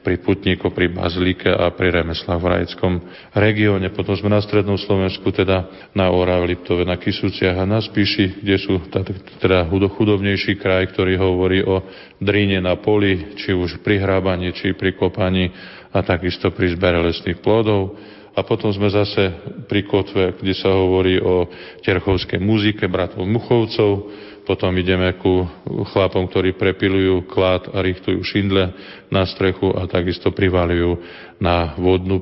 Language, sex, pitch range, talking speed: Slovak, male, 90-100 Hz, 145 wpm